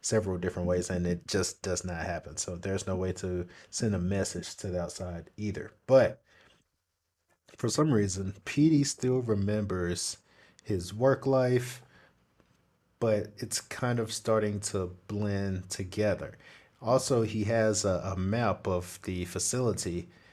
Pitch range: 90-110 Hz